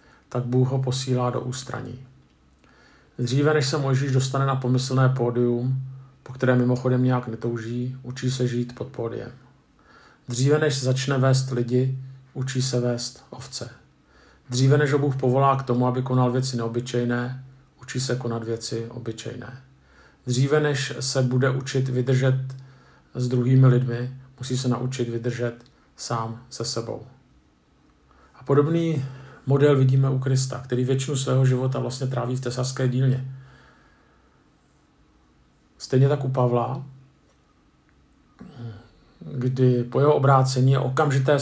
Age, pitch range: 50-69, 125-135 Hz